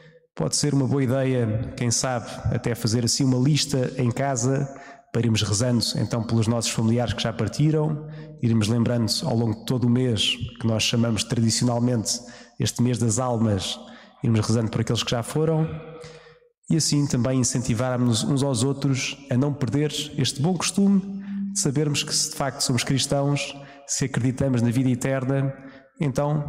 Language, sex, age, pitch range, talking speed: Portuguese, male, 20-39, 115-140 Hz, 170 wpm